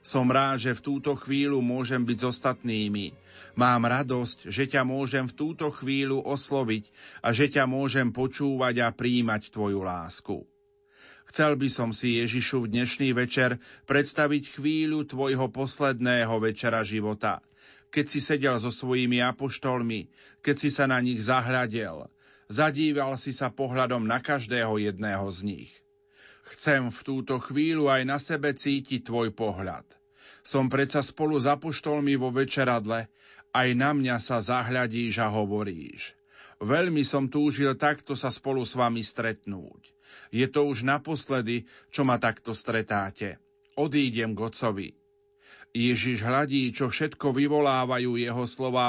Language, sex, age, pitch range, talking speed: Slovak, male, 40-59, 120-140 Hz, 140 wpm